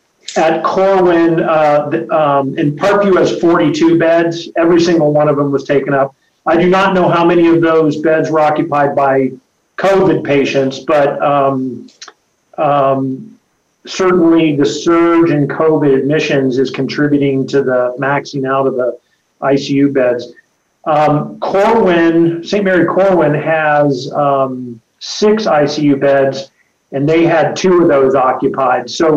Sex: male